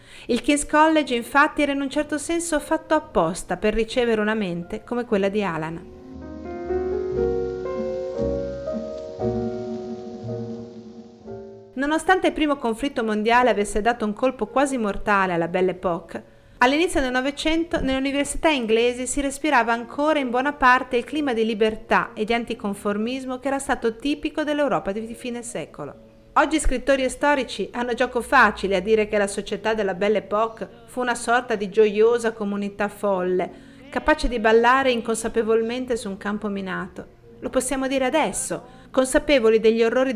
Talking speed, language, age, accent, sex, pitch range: 145 wpm, Italian, 40-59, native, female, 205-280 Hz